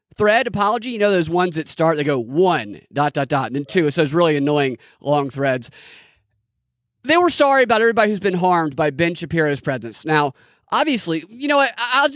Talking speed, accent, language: 200 wpm, American, English